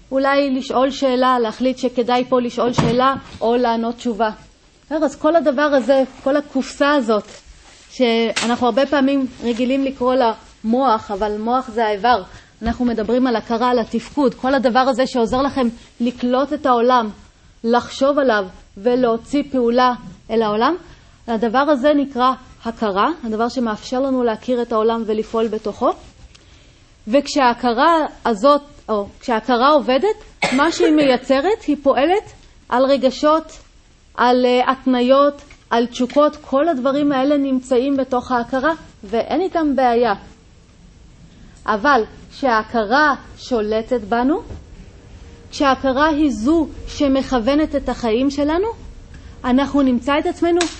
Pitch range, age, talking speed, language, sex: 240-285 Hz, 30-49, 120 wpm, Hebrew, female